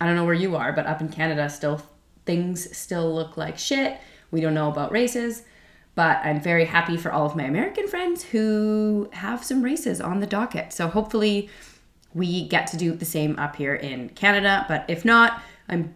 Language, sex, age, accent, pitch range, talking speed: English, female, 20-39, American, 155-205 Hz, 205 wpm